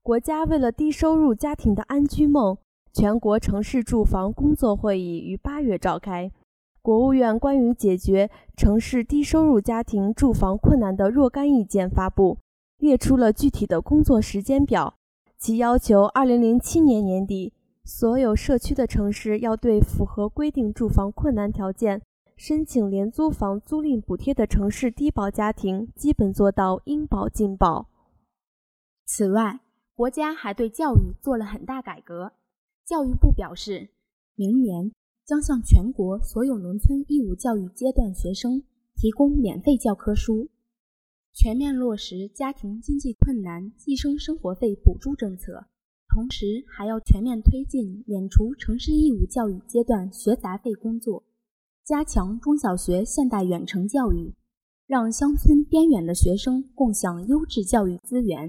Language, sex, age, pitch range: Chinese, female, 20-39, 200-270 Hz